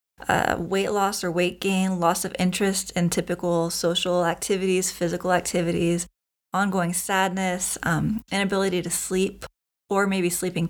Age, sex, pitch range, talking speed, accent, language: 20-39, female, 175-195 Hz, 135 wpm, American, English